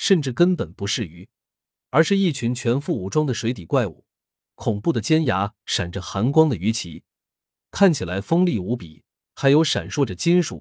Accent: native